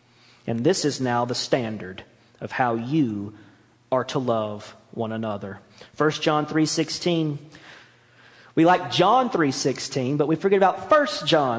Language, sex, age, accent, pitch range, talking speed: English, male, 40-59, American, 115-155 Hz, 140 wpm